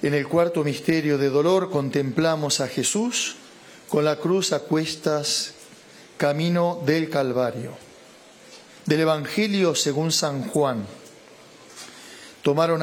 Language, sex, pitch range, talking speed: Spanish, male, 140-165 Hz, 110 wpm